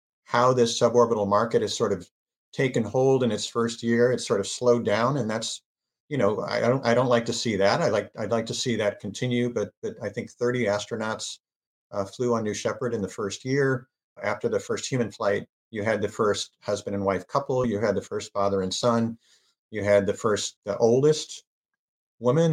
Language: English